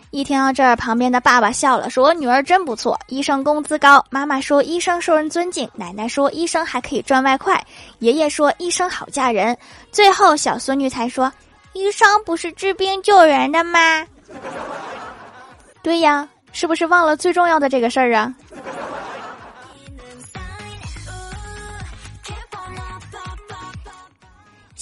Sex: female